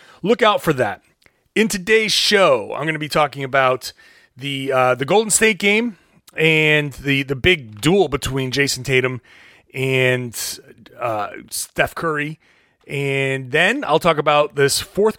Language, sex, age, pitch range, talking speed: English, male, 30-49, 130-180 Hz, 150 wpm